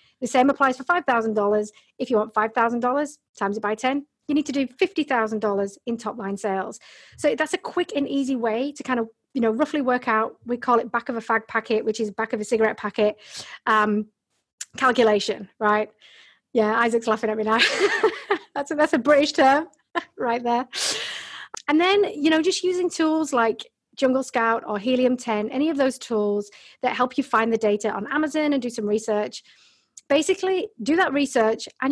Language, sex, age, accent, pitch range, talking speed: English, female, 30-49, British, 215-285 Hz, 195 wpm